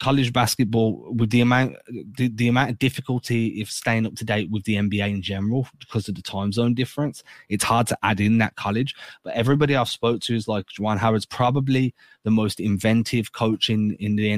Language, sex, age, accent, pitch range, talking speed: English, male, 20-39, British, 105-125 Hz, 210 wpm